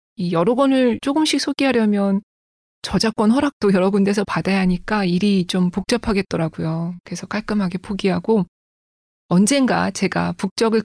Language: Korean